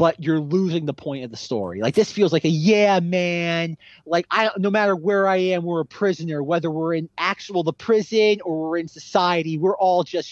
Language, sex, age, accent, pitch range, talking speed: English, male, 30-49, American, 145-180 Hz, 220 wpm